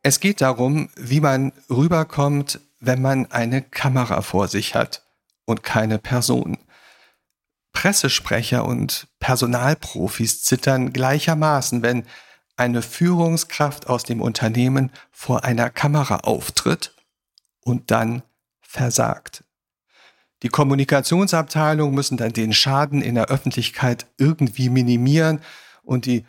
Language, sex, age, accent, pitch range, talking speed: German, male, 50-69, German, 120-145 Hz, 105 wpm